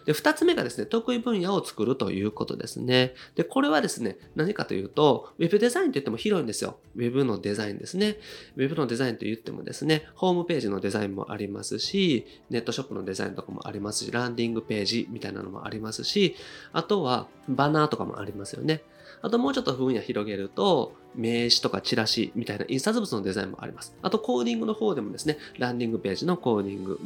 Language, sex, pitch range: Japanese, male, 110-175 Hz